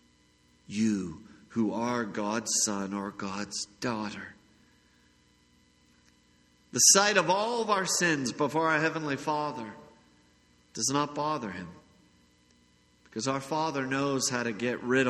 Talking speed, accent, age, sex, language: 125 wpm, American, 50-69, male, English